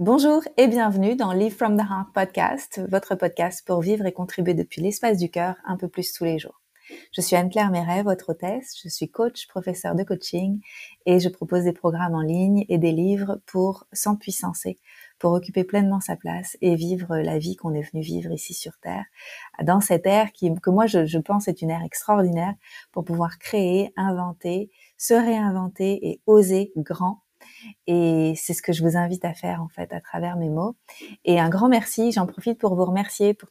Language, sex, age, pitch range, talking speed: French, female, 30-49, 175-205 Hz, 200 wpm